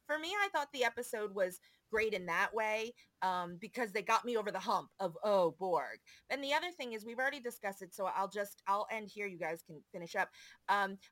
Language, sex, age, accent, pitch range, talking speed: English, female, 30-49, American, 195-270 Hz, 230 wpm